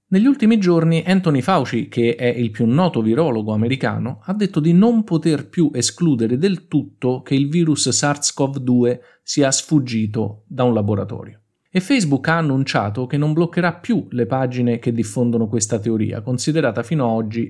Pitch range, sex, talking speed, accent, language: 110-155 Hz, male, 165 wpm, native, Italian